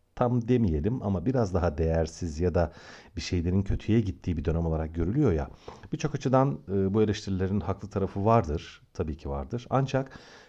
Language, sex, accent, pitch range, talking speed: Turkish, male, native, 85-125 Hz, 160 wpm